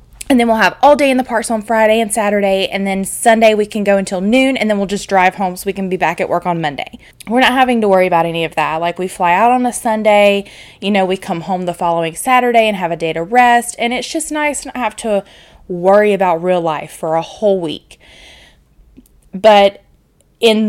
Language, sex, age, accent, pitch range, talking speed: English, female, 20-39, American, 180-225 Hz, 240 wpm